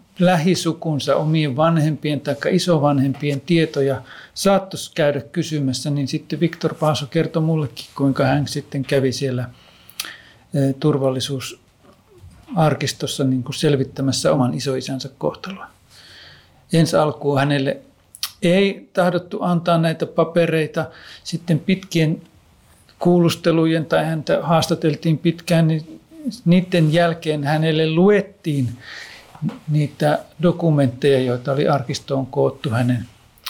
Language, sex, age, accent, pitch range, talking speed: Finnish, male, 50-69, native, 135-160 Hz, 95 wpm